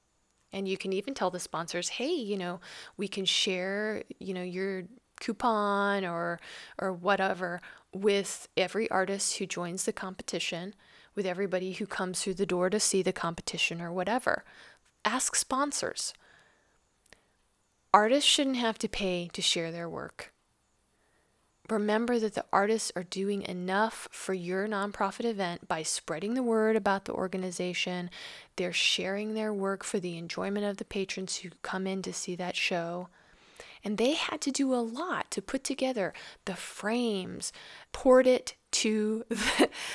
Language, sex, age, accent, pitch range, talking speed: English, female, 20-39, American, 185-225 Hz, 155 wpm